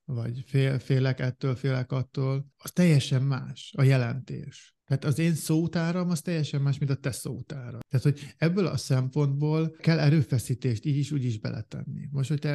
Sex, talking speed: male, 175 wpm